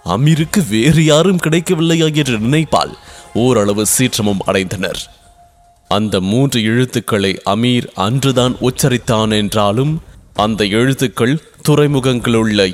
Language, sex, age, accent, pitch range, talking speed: English, male, 20-39, Indian, 110-140 Hz, 90 wpm